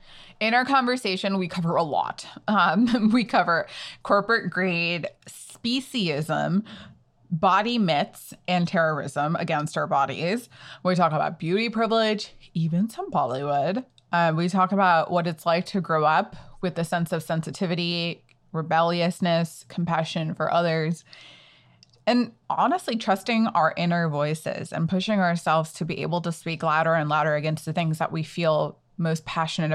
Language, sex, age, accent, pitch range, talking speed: English, female, 20-39, American, 165-215 Hz, 145 wpm